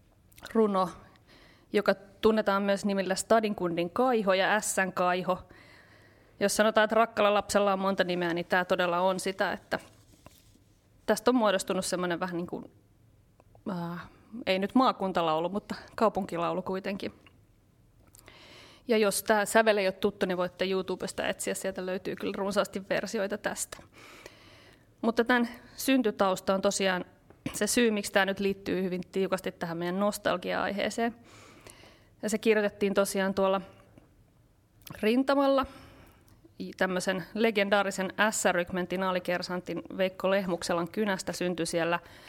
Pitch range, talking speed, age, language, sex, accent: 180-205 Hz, 120 wpm, 30-49, Finnish, female, native